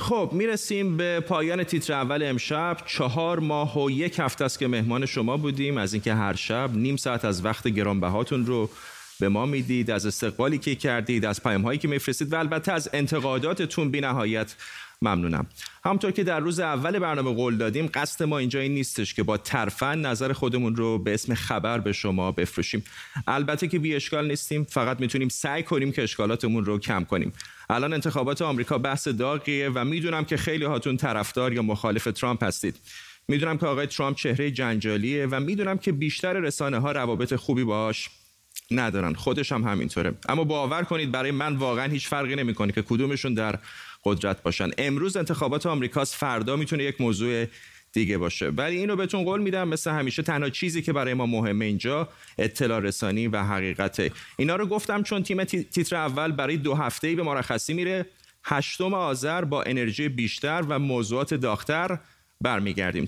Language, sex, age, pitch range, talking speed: Persian, male, 30-49, 115-155 Hz, 170 wpm